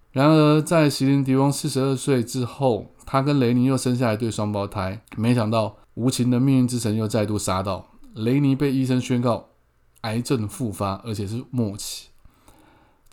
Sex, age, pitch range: male, 20-39, 100-130 Hz